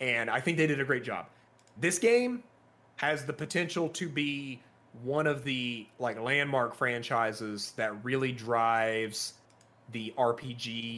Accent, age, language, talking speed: American, 30-49, English, 140 wpm